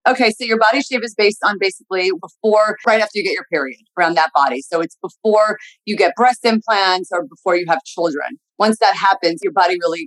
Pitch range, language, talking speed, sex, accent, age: 170-215 Hz, English, 220 wpm, female, American, 30-49